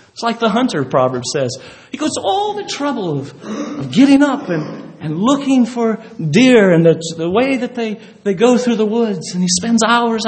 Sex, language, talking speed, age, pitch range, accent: male, English, 210 wpm, 40-59, 150-245 Hz, American